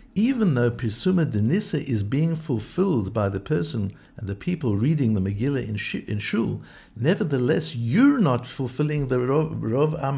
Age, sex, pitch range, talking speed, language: 60-79, male, 115-160 Hz, 165 wpm, English